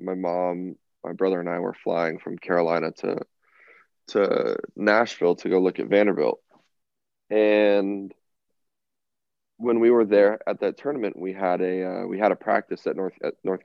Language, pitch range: English, 90-105 Hz